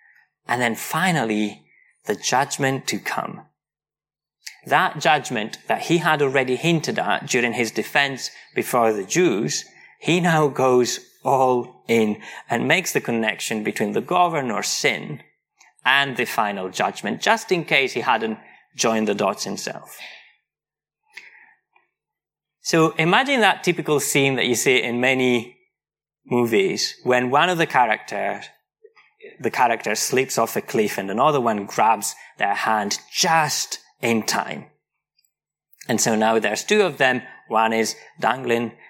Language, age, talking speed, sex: English, 30-49, 135 wpm, male